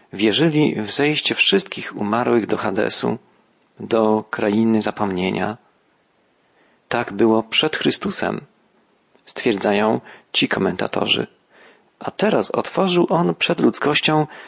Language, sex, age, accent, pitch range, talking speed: Polish, male, 40-59, native, 110-155 Hz, 95 wpm